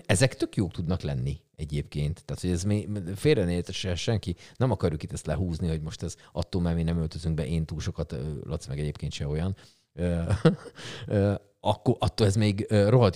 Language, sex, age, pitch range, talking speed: Hungarian, male, 40-59, 80-105 Hz, 175 wpm